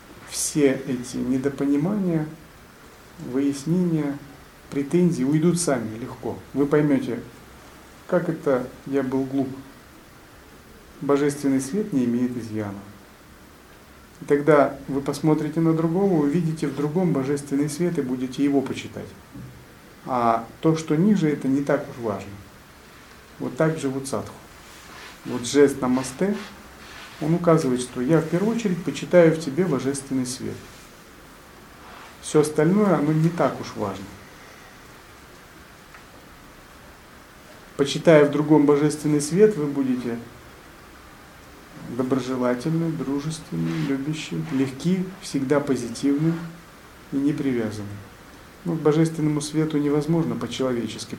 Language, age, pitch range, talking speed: Russian, 40-59, 125-155 Hz, 110 wpm